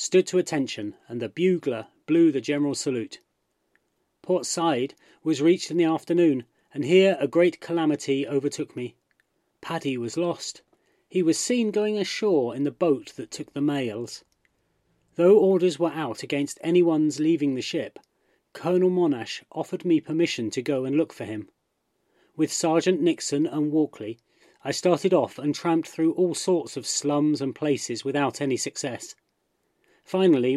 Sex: male